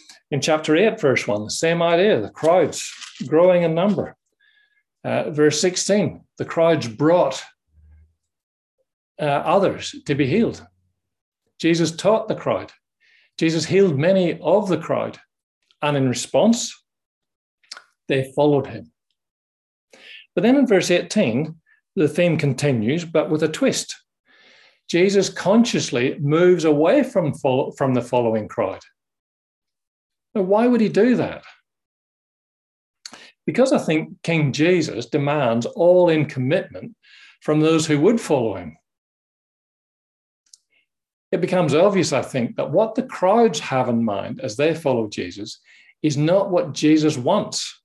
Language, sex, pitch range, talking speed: English, male, 145-190 Hz, 130 wpm